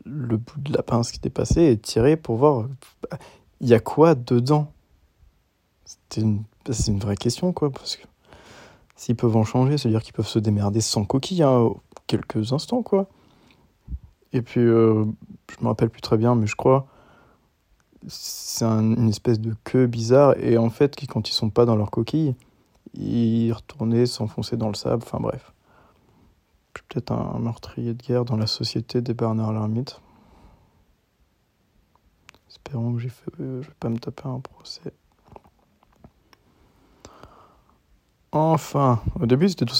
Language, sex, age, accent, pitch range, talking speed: French, male, 20-39, French, 110-130 Hz, 165 wpm